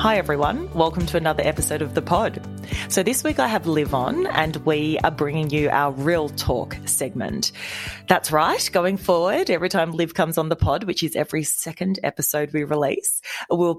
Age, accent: 30-49, Australian